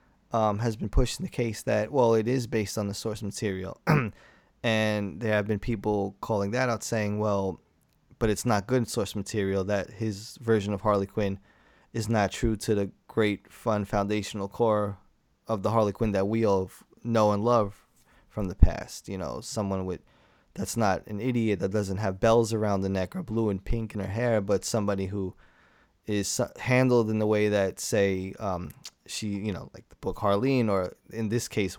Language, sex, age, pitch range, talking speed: English, male, 20-39, 100-120 Hz, 195 wpm